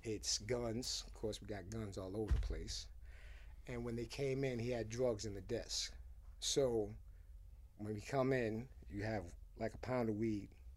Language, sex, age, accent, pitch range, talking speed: English, male, 50-69, American, 85-130 Hz, 190 wpm